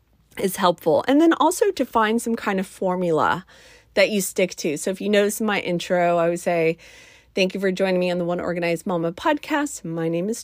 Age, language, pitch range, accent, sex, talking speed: 30-49, English, 175-235 Hz, American, female, 220 wpm